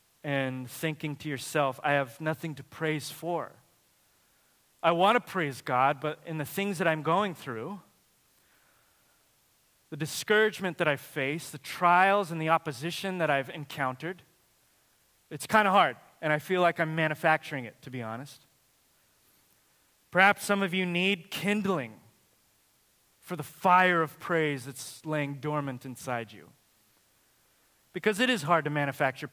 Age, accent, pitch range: 30-49, American, 135-165 Hz